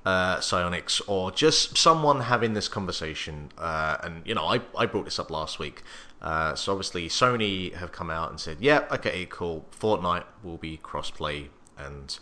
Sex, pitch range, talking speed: male, 80-105 Hz, 175 wpm